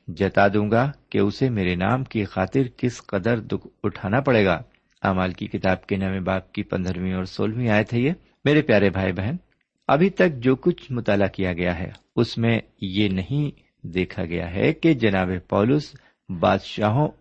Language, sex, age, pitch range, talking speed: Urdu, male, 50-69, 95-130 Hz, 180 wpm